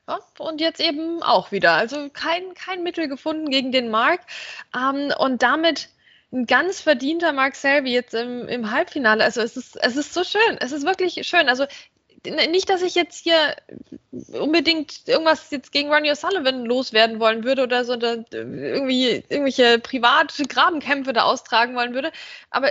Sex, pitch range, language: female, 235-315 Hz, German